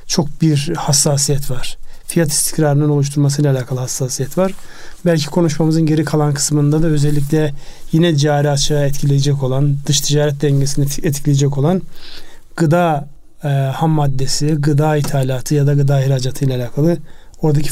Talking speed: 135 wpm